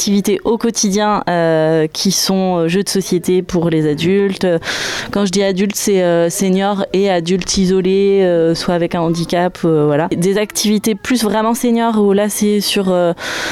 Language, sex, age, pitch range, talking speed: French, female, 20-39, 175-220 Hz, 175 wpm